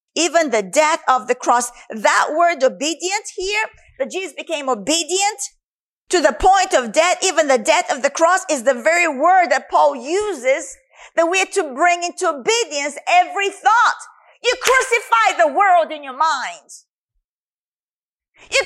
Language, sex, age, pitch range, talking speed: English, female, 40-59, 300-375 Hz, 160 wpm